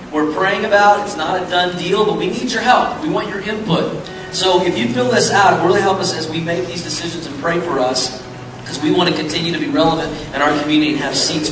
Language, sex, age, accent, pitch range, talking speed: English, male, 40-59, American, 150-190 Hz, 270 wpm